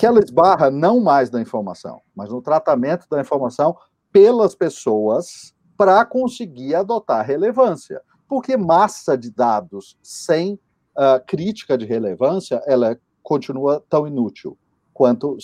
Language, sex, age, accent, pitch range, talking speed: Portuguese, male, 40-59, Brazilian, 130-195 Hz, 120 wpm